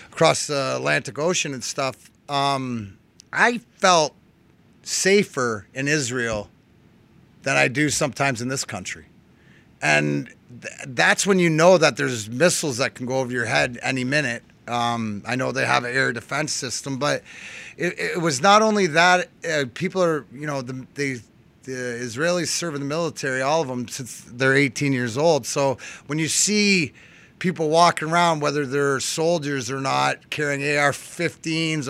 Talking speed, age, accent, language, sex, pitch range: 165 wpm, 30-49, American, English, male, 130-170 Hz